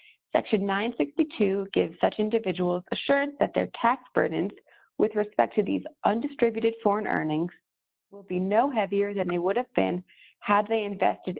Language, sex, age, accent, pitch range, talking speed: English, female, 30-49, American, 180-225 Hz, 155 wpm